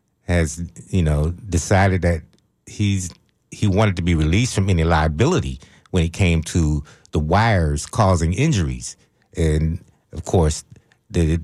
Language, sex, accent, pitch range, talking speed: English, male, American, 80-100 Hz, 135 wpm